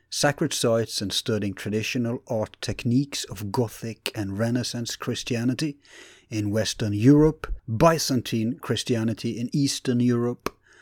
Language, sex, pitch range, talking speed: English, male, 105-140 Hz, 110 wpm